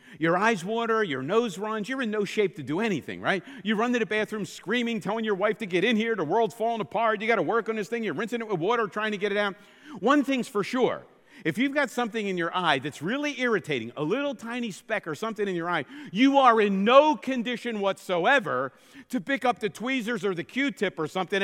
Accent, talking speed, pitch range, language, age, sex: American, 245 wpm, 160-235 Hz, English, 50-69, male